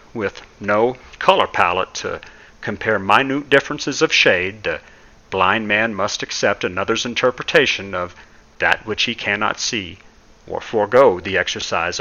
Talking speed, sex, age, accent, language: 135 wpm, male, 50-69, American, English